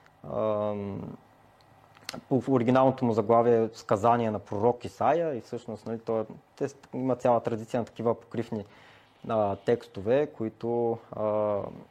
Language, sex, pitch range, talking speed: Bulgarian, male, 110-130 Hz, 110 wpm